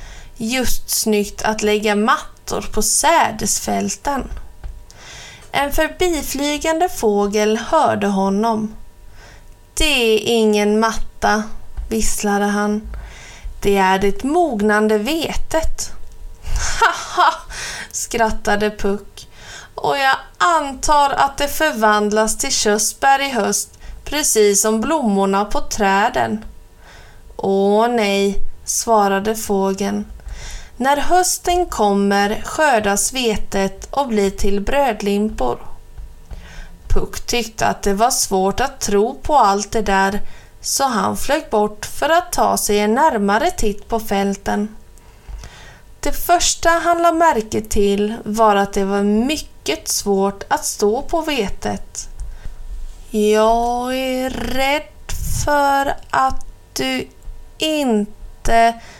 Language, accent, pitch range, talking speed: Swedish, native, 205-275 Hz, 105 wpm